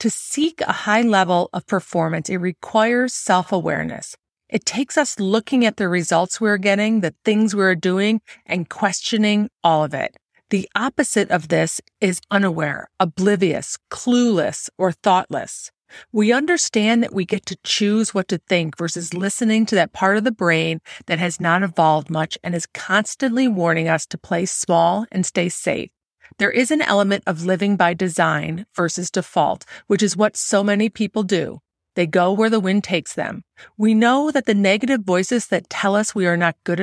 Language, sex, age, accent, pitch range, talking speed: English, female, 40-59, American, 175-220 Hz, 180 wpm